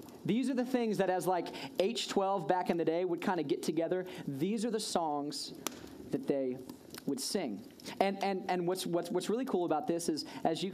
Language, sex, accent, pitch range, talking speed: English, male, American, 160-205 Hz, 210 wpm